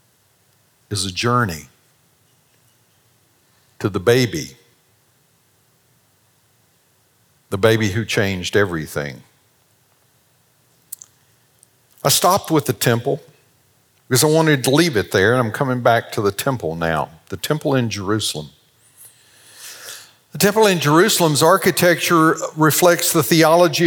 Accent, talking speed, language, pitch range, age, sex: American, 110 wpm, English, 125-165 Hz, 60-79, male